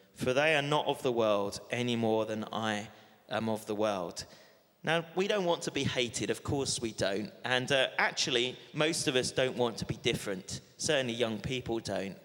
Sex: male